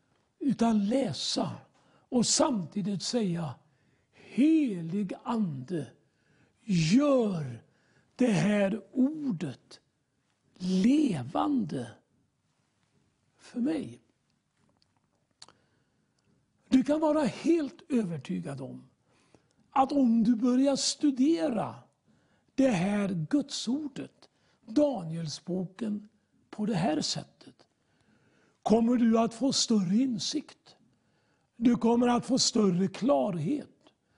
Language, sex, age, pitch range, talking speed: English, male, 60-79, 180-265 Hz, 85 wpm